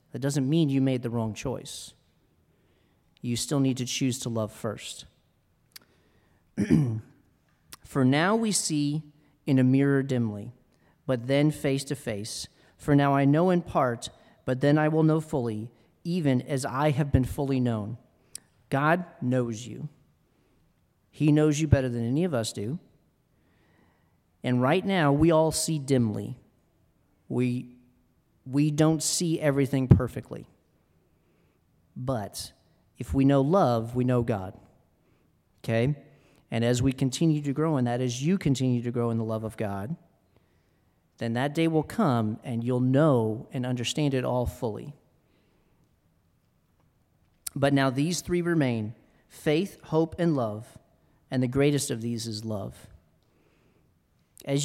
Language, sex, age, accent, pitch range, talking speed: English, male, 40-59, American, 120-150 Hz, 145 wpm